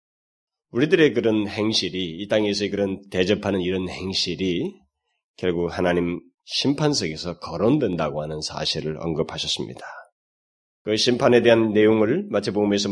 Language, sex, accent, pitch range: Korean, male, native, 90-110 Hz